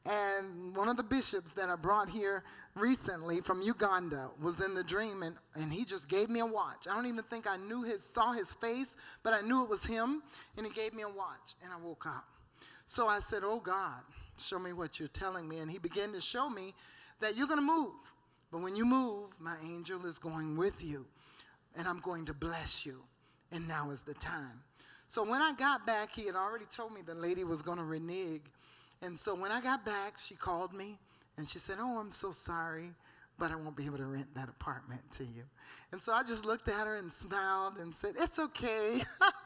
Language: English